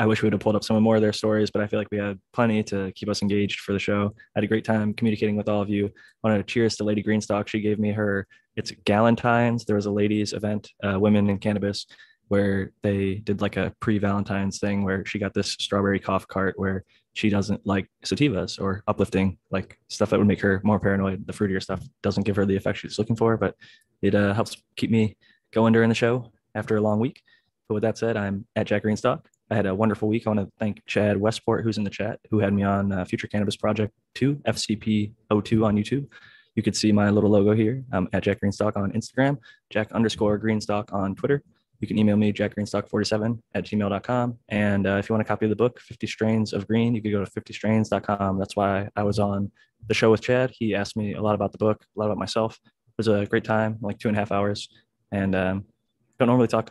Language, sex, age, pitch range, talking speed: English, male, 20-39, 100-110 Hz, 245 wpm